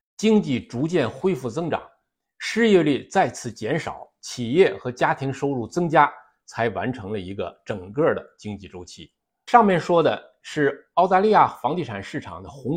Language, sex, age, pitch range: Chinese, male, 50-69, 115-185 Hz